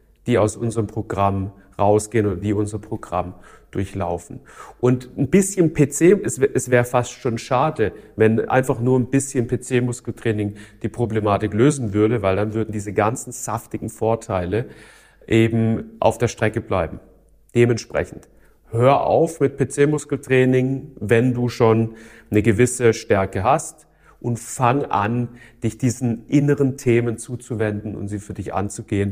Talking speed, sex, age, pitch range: 140 wpm, male, 40-59, 105-125 Hz